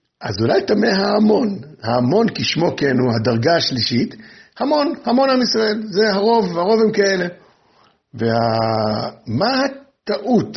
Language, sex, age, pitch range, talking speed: Hebrew, male, 60-79, 165-235 Hz, 125 wpm